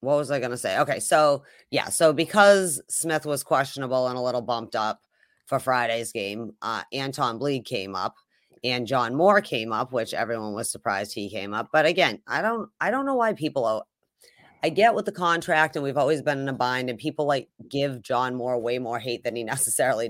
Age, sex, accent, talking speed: 30-49, female, American, 215 wpm